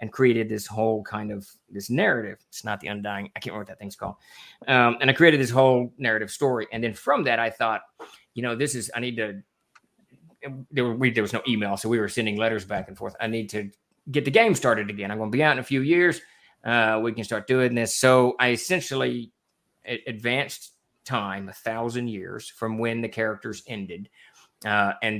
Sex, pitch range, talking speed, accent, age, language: male, 110-125 Hz, 225 wpm, American, 30-49, English